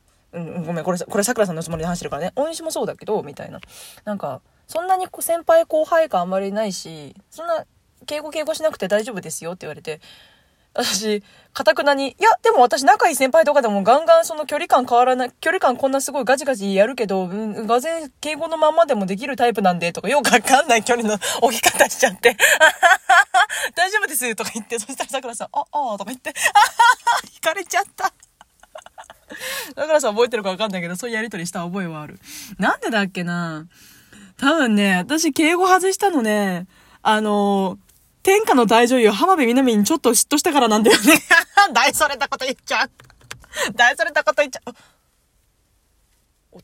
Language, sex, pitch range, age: Japanese, female, 195-315 Hz, 20-39